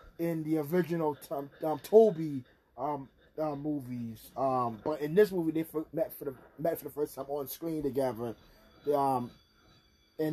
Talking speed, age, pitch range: 170 wpm, 20-39, 150-190 Hz